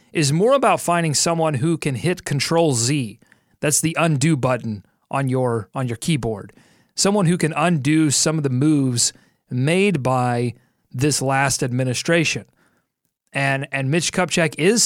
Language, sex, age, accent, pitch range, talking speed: English, male, 30-49, American, 130-160 Hz, 150 wpm